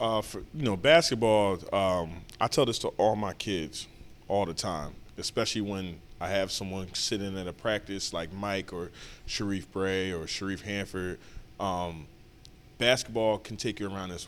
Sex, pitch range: male, 95-115 Hz